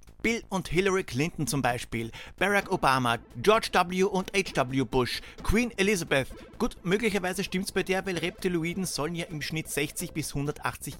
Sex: male